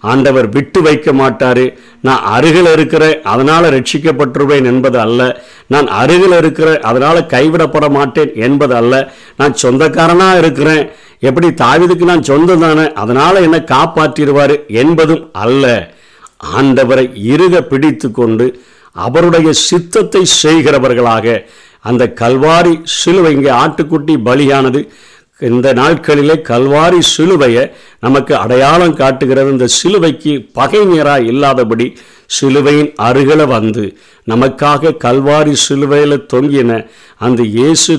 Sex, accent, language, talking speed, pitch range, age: male, native, Tamil, 100 wpm, 125-155 Hz, 50-69